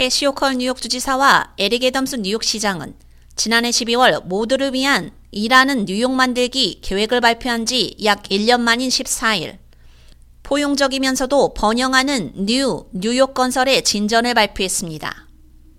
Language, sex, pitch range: Korean, female, 210-260 Hz